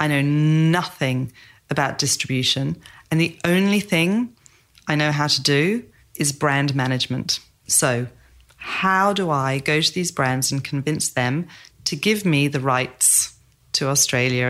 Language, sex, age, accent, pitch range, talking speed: English, female, 30-49, British, 130-155 Hz, 145 wpm